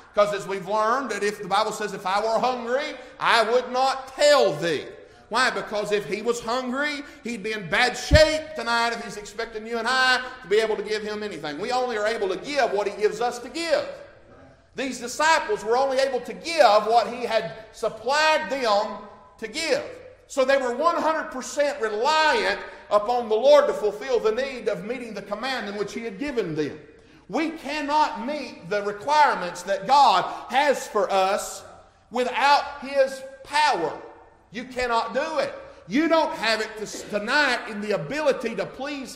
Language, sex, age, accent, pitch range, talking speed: English, male, 50-69, American, 210-285 Hz, 180 wpm